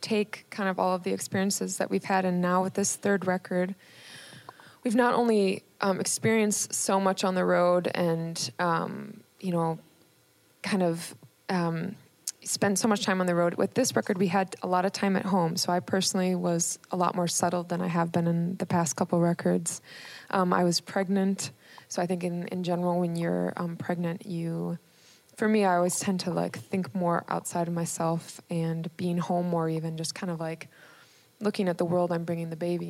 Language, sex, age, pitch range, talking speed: English, female, 20-39, 170-190 Hz, 205 wpm